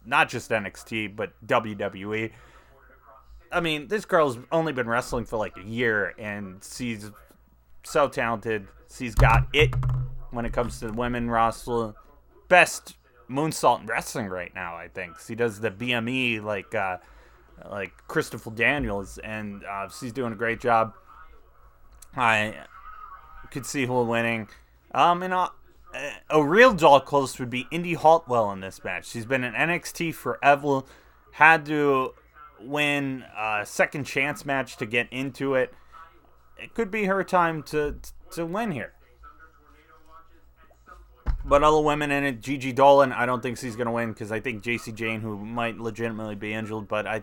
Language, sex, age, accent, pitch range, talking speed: English, male, 20-39, American, 105-140 Hz, 155 wpm